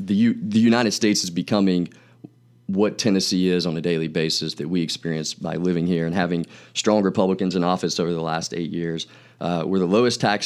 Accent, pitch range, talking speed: American, 85-95 Hz, 205 wpm